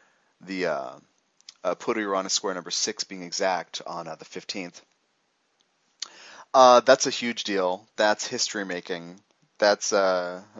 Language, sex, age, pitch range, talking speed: English, male, 30-49, 90-110 Hz, 130 wpm